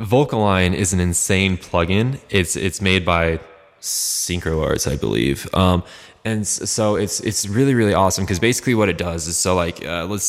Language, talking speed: English, 180 wpm